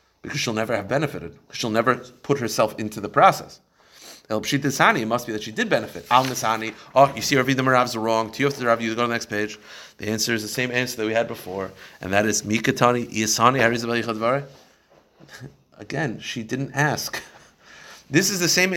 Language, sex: English, male